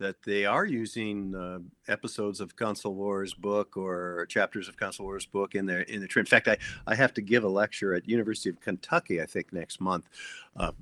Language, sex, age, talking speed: English, male, 50-69, 205 wpm